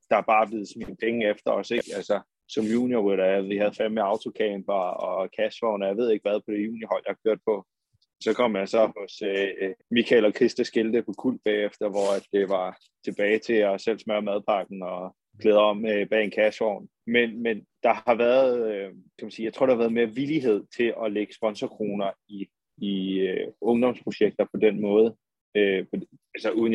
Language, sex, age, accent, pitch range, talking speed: Danish, male, 20-39, native, 100-110 Hz, 200 wpm